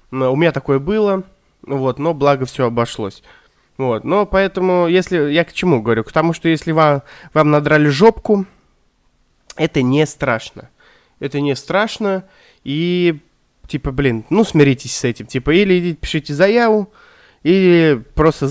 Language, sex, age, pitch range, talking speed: Russian, male, 20-39, 125-175 Hz, 150 wpm